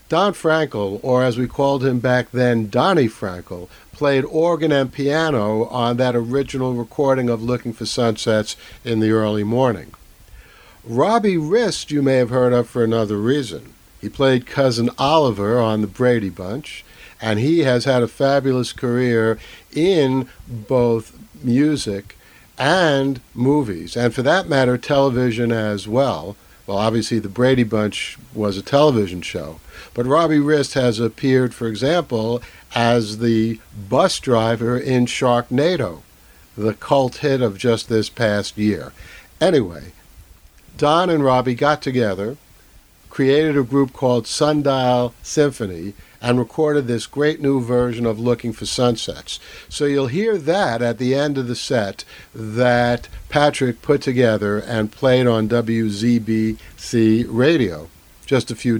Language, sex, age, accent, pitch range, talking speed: English, male, 60-79, American, 110-135 Hz, 140 wpm